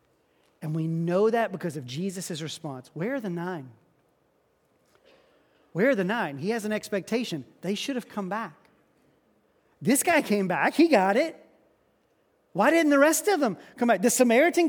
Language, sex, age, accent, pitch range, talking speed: English, male, 30-49, American, 180-270 Hz, 170 wpm